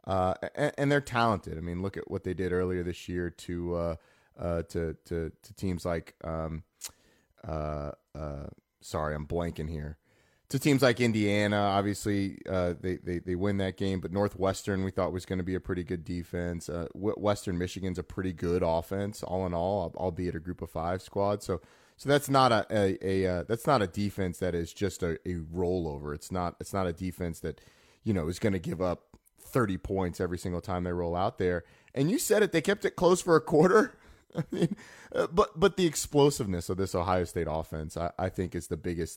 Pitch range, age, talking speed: 85-105 Hz, 30-49, 215 wpm